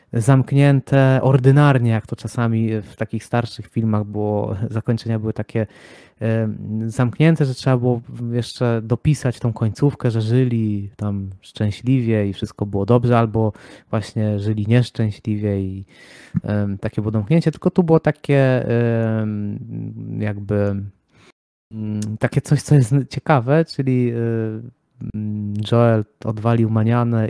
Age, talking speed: 20-39, 110 wpm